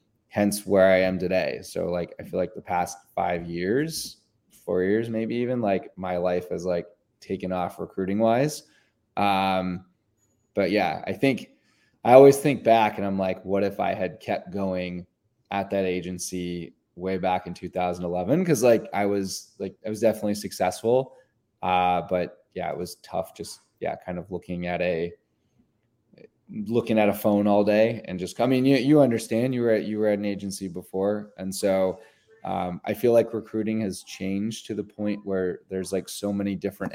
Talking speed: 185 wpm